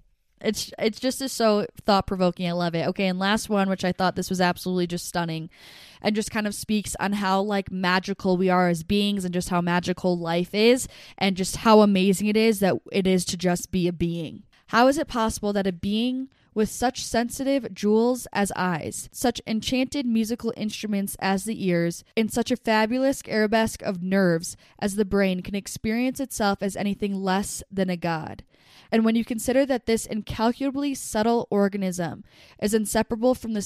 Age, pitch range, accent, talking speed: 10-29, 180-225 Hz, American, 190 wpm